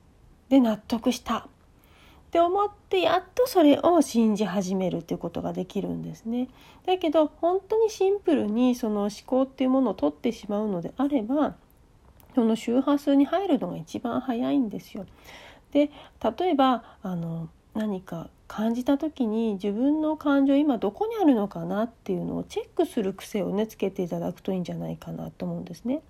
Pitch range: 195-285 Hz